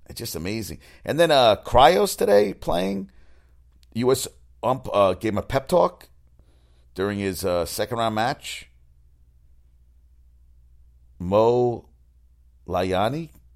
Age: 50-69